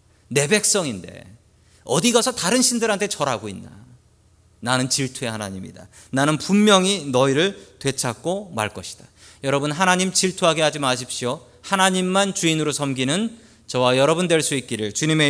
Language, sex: Korean, male